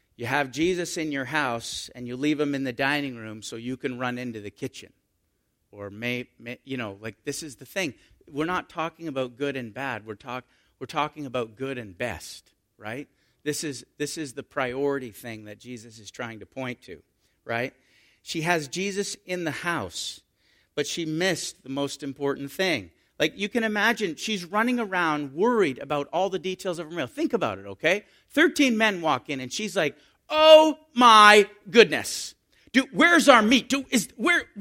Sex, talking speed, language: male, 190 wpm, English